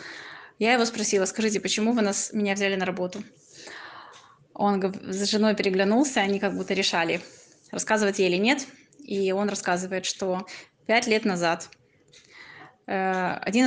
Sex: female